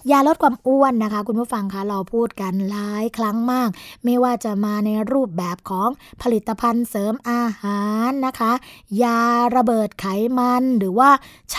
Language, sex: Thai, female